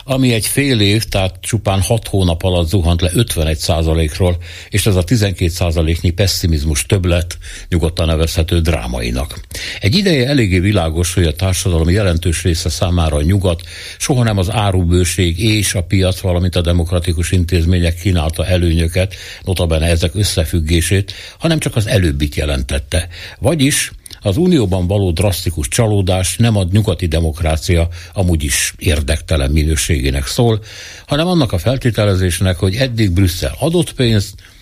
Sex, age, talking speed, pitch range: male, 60-79, 135 wpm, 85-105 Hz